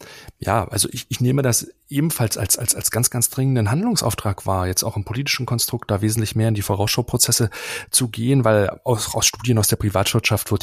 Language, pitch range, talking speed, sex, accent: German, 105-125 Hz, 205 wpm, male, German